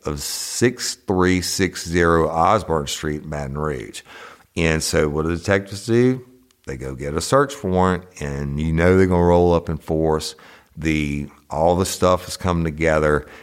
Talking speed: 170 wpm